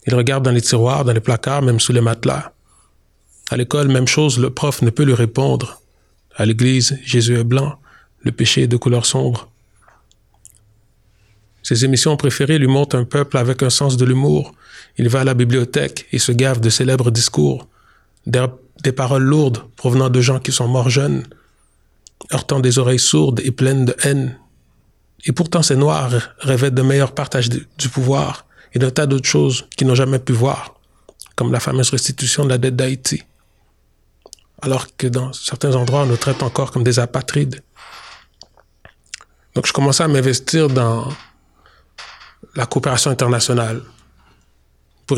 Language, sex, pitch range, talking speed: French, male, 115-135 Hz, 165 wpm